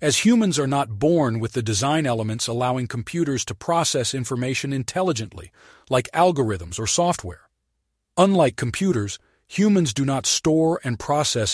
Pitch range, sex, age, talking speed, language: 115-150 Hz, male, 40-59, 140 wpm, English